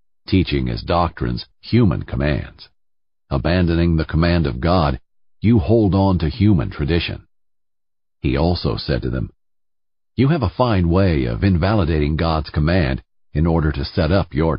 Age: 50-69